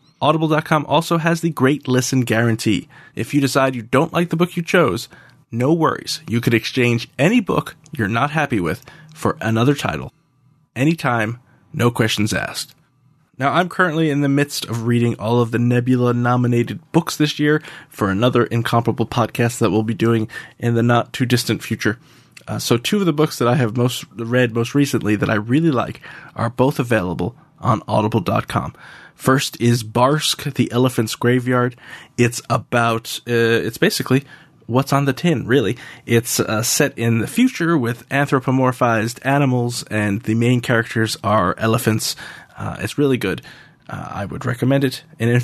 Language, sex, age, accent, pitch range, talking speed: English, male, 20-39, American, 115-145 Hz, 165 wpm